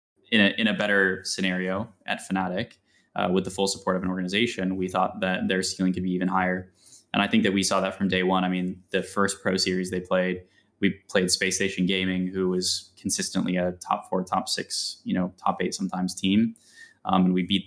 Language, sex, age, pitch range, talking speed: English, male, 10-29, 90-100 Hz, 220 wpm